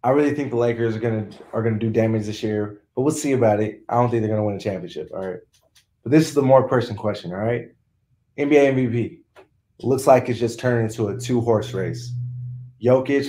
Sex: male